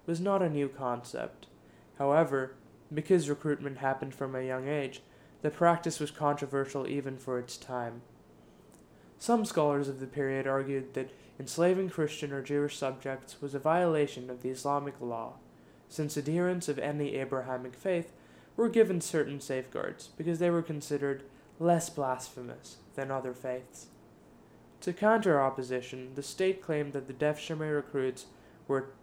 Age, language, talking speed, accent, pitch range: 20-39, English, 145 wpm, American, 130-165 Hz